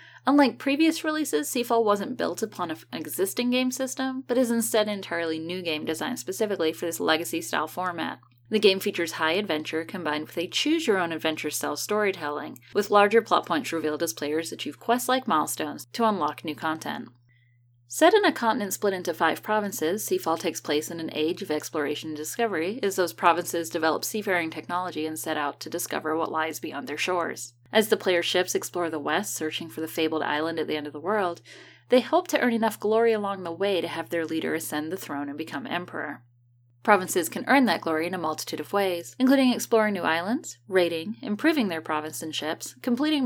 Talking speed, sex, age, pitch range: 195 wpm, female, 10-29, 155-220 Hz